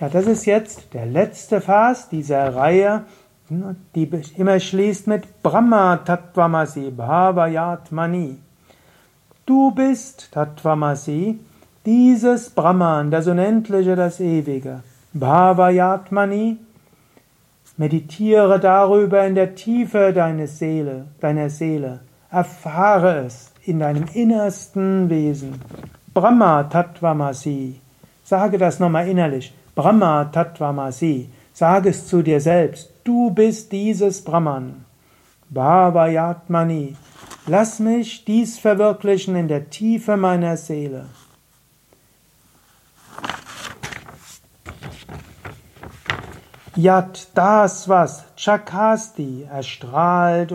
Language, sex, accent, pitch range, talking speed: German, male, German, 150-200 Hz, 85 wpm